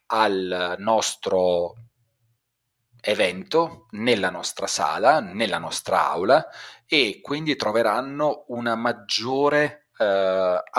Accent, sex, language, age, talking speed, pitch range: native, male, Italian, 40-59, 85 wpm, 100-120 Hz